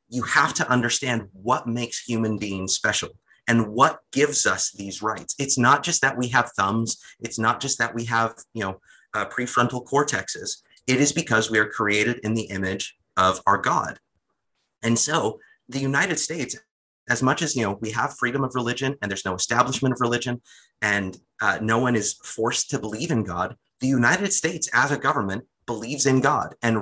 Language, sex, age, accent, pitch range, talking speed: English, male, 30-49, American, 105-125 Hz, 190 wpm